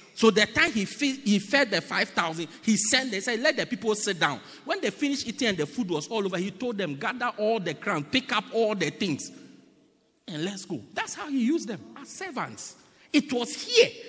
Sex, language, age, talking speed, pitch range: male, English, 50-69, 215 wpm, 160-250 Hz